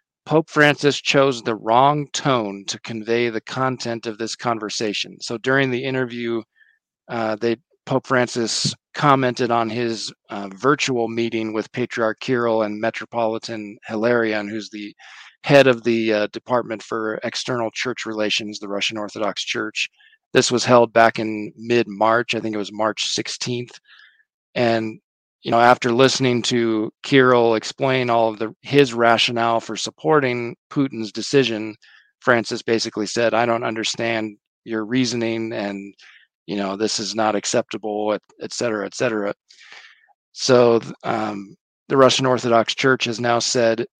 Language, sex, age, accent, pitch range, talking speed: English, male, 40-59, American, 110-125 Hz, 145 wpm